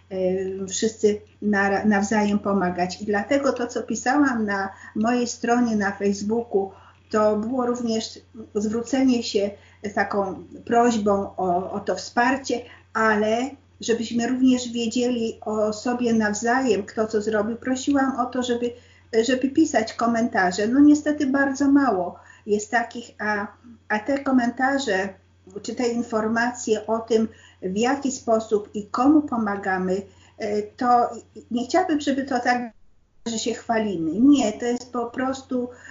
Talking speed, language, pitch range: 125 wpm, Polish, 210-245 Hz